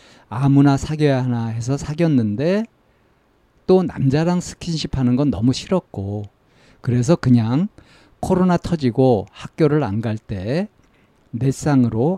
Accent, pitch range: native, 110-155 Hz